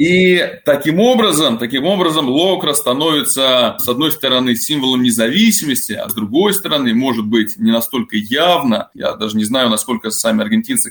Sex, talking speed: male, 155 wpm